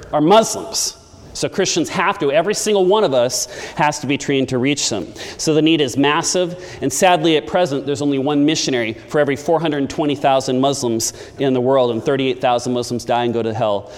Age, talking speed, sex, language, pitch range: 40-59, 195 wpm, male, English, 130-160 Hz